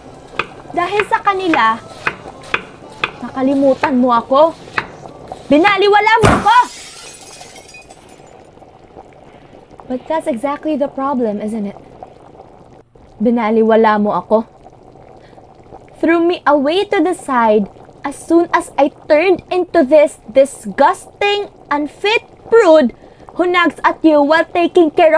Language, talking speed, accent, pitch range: Filipino, 100 wpm, native, 285-380 Hz